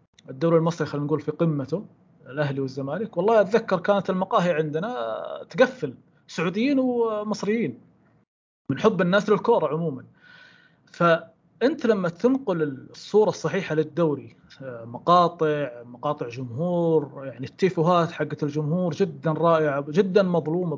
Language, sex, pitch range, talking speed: Arabic, male, 155-195 Hz, 110 wpm